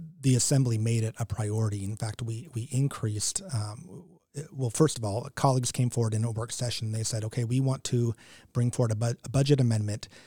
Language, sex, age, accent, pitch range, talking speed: English, male, 30-49, American, 110-135 Hz, 215 wpm